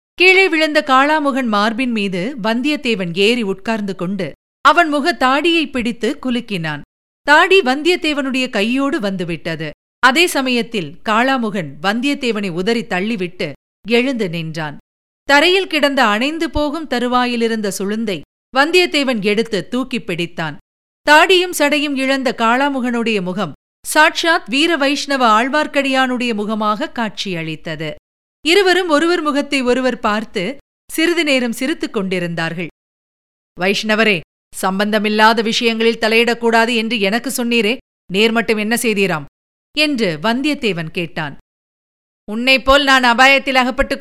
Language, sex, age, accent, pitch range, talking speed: Tamil, female, 50-69, native, 210-275 Hz, 100 wpm